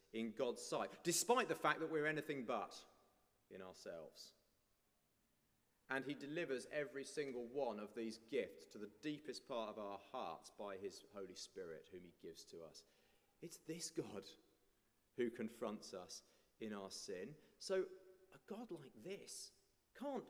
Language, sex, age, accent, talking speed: English, male, 30-49, British, 155 wpm